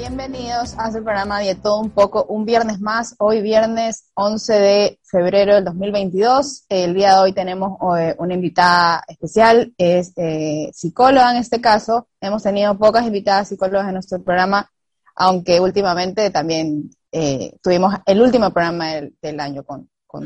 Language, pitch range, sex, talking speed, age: Spanish, 180-210 Hz, female, 165 wpm, 20-39